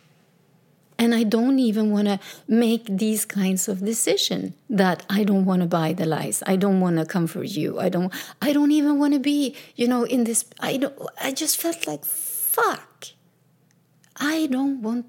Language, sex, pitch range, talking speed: English, female, 165-220 Hz, 185 wpm